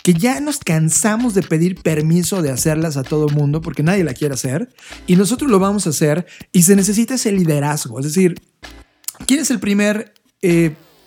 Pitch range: 150-190 Hz